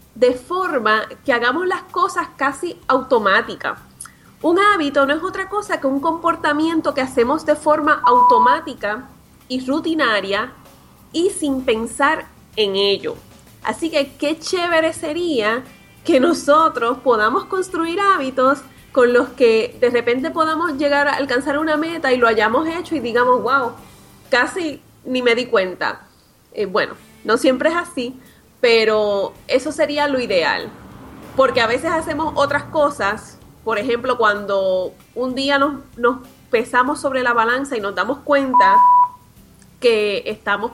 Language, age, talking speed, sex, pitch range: Spanish, 30-49, 140 wpm, female, 240-315 Hz